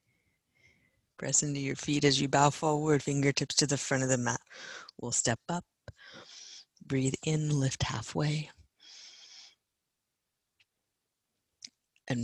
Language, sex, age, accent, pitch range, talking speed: English, female, 60-79, American, 120-180 Hz, 115 wpm